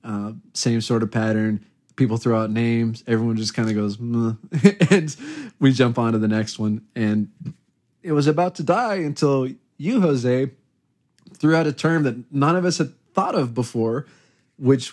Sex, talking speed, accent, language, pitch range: male, 175 wpm, American, English, 115-145 Hz